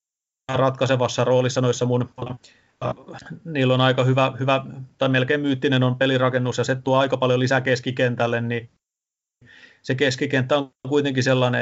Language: Finnish